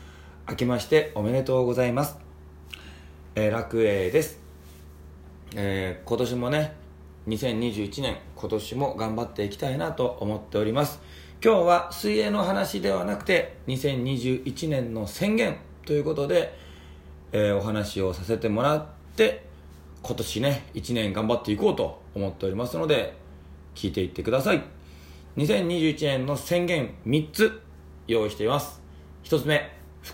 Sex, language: male, Japanese